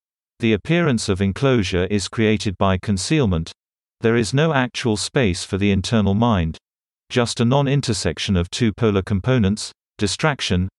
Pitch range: 95-120 Hz